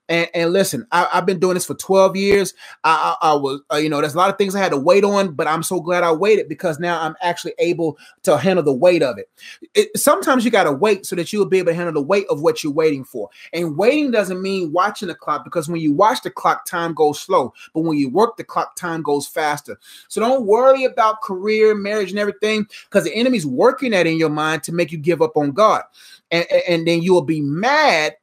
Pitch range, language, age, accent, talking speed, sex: 160-215 Hz, English, 30-49, American, 250 wpm, male